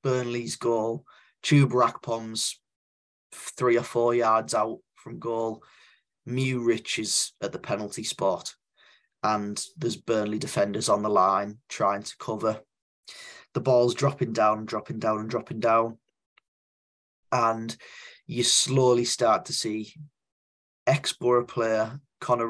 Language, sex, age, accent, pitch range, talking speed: English, male, 10-29, British, 110-125 Hz, 125 wpm